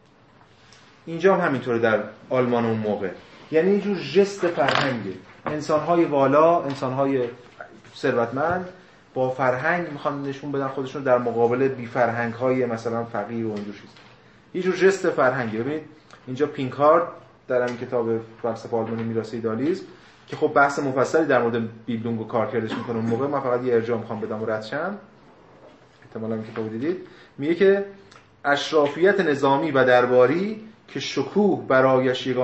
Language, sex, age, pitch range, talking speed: Persian, male, 30-49, 115-150 Hz, 135 wpm